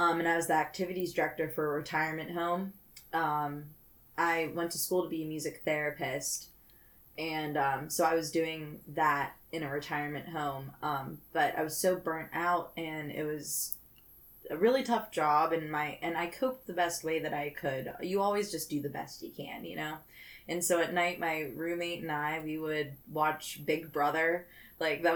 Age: 20-39